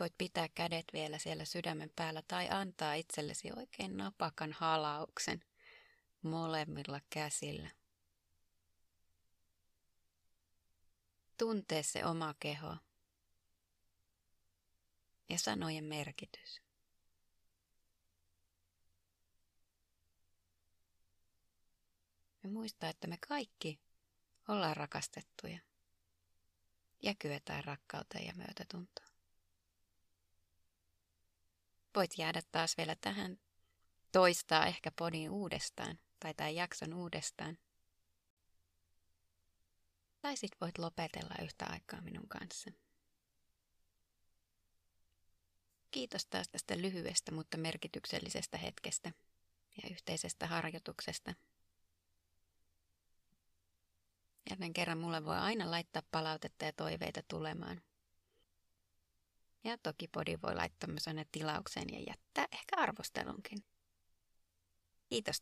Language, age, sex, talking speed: Finnish, 30-49, female, 80 wpm